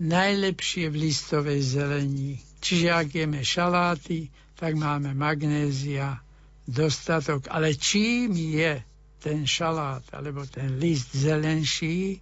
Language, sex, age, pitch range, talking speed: Slovak, male, 60-79, 145-170 Hz, 105 wpm